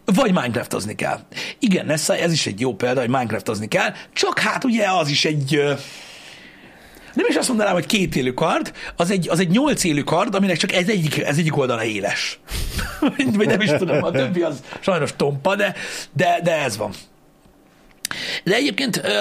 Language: Hungarian